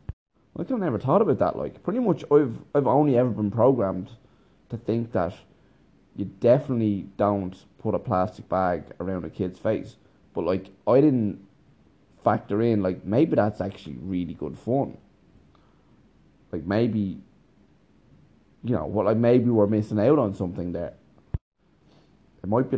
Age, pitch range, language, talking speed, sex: 20-39, 95-120 Hz, English, 155 wpm, male